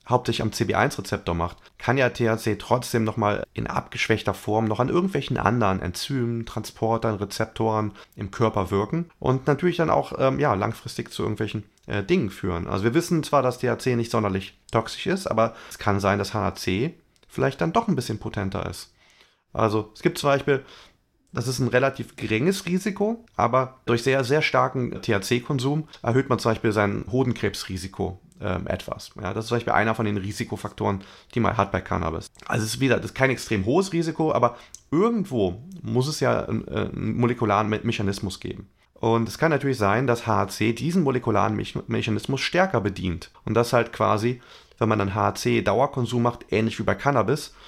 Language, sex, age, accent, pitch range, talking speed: German, male, 30-49, German, 105-130 Hz, 180 wpm